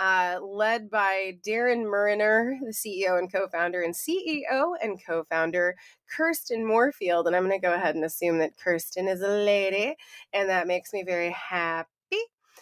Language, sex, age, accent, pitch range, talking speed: English, female, 20-39, American, 185-240 Hz, 160 wpm